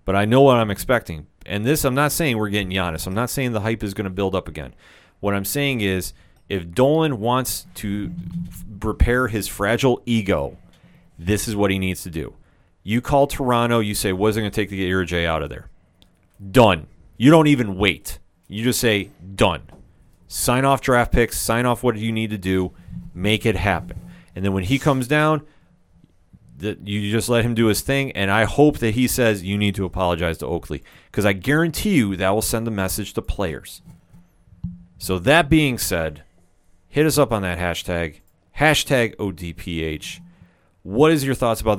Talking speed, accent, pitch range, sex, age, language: 200 wpm, American, 90-120 Hz, male, 30-49, English